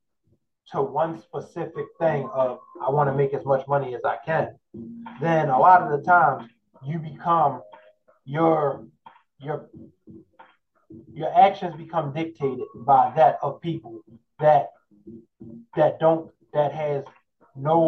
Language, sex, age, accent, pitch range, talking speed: English, male, 20-39, American, 135-170 Hz, 130 wpm